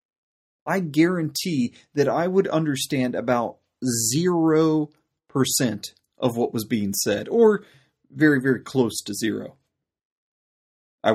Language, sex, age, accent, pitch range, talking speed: English, male, 30-49, American, 130-180 Hz, 110 wpm